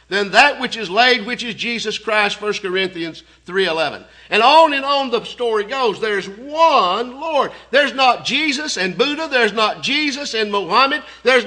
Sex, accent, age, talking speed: male, American, 50-69, 175 wpm